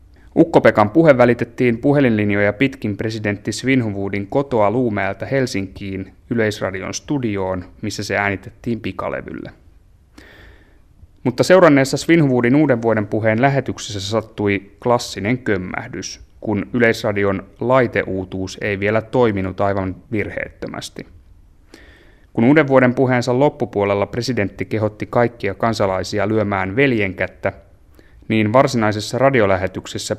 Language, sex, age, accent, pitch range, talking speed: Finnish, male, 30-49, native, 95-120 Hz, 95 wpm